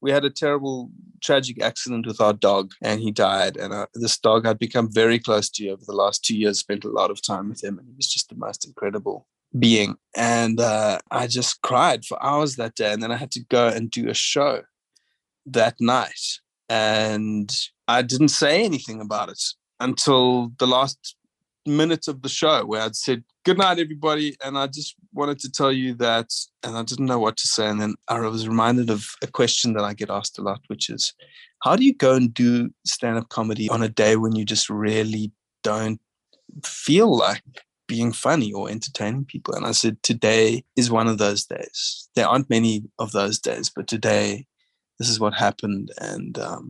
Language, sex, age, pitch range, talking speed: English, male, 20-39, 105-130 Hz, 205 wpm